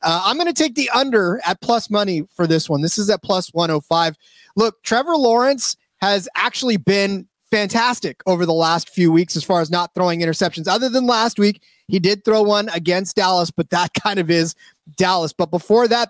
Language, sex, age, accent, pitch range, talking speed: English, male, 30-49, American, 165-200 Hz, 215 wpm